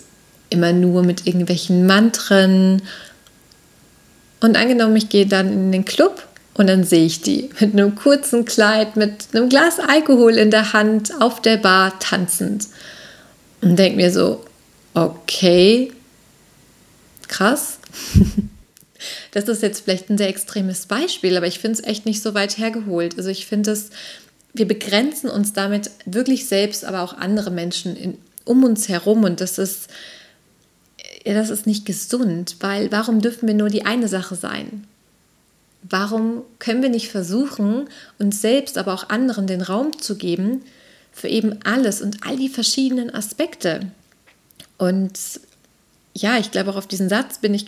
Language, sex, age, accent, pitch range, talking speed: German, female, 30-49, German, 190-230 Hz, 155 wpm